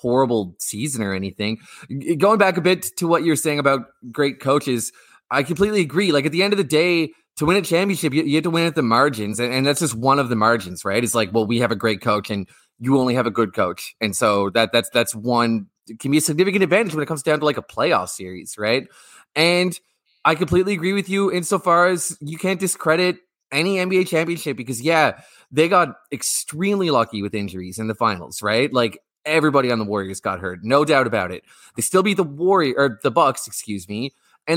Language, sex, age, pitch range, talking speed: English, male, 20-39, 120-170 Hz, 225 wpm